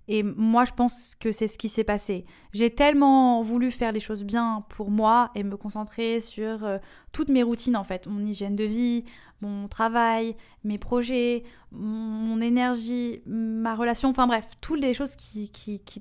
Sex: female